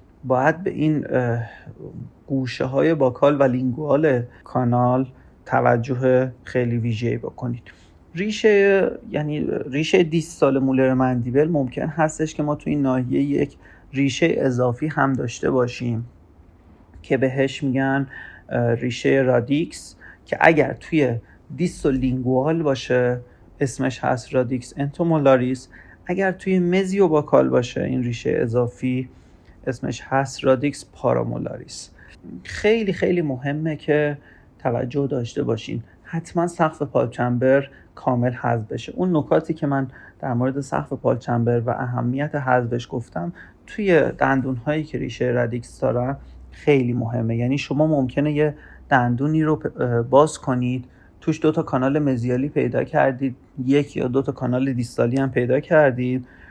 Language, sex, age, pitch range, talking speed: Persian, male, 30-49, 120-145 Hz, 125 wpm